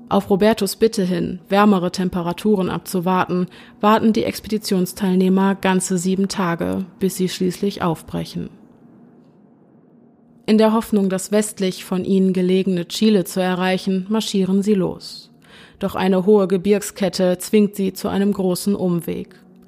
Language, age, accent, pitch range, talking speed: German, 30-49, German, 180-205 Hz, 125 wpm